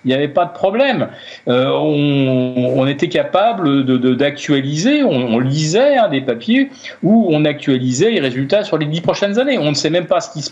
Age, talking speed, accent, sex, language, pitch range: 50-69, 215 wpm, French, male, French, 135-220 Hz